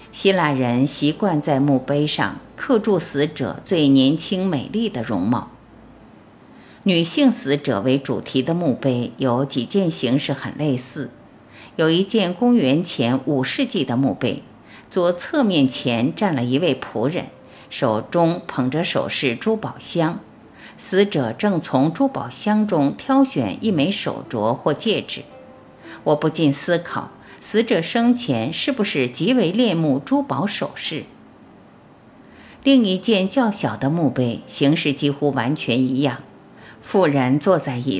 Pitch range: 135-210 Hz